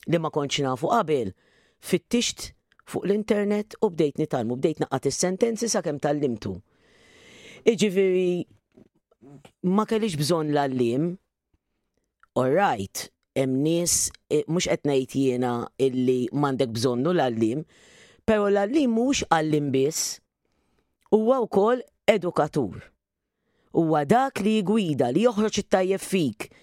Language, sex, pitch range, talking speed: English, female, 135-205 Hz, 80 wpm